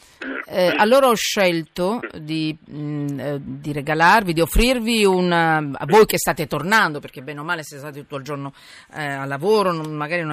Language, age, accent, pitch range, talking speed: Italian, 40-59, native, 155-225 Hz, 185 wpm